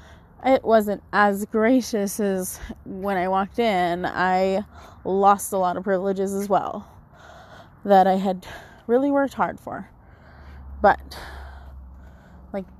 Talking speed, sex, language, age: 120 wpm, female, English, 20-39